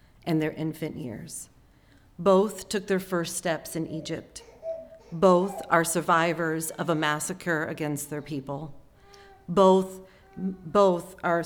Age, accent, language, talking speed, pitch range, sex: 40-59, American, English, 120 wpm, 160-195 Hz, female